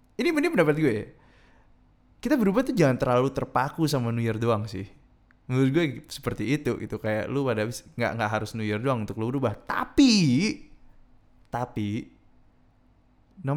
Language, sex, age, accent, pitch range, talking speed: Indonesian, male, 20-39, native, 115-170 Hz, 150 wpm